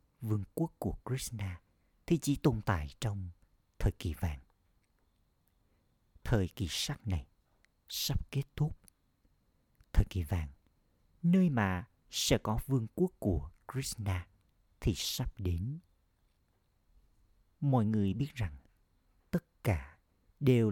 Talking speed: 115 wpm